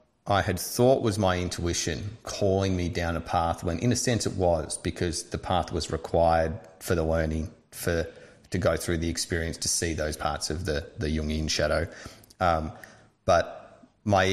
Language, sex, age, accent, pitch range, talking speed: English, male, 30-49, Australian, 85-100 Hz, 180 wpm